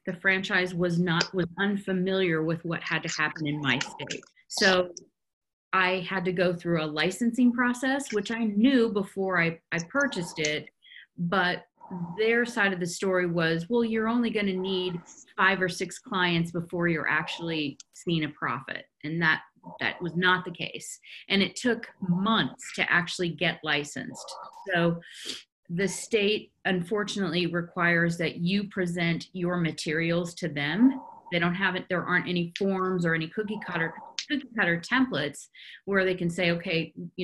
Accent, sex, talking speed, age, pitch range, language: American, female, 160 wpm, 30-49, 170-200 Hz, English